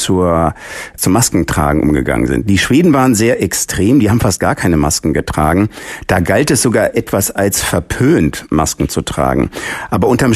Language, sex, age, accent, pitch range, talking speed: German, male, 50-69, German, 90-115 Hz, 170 wpm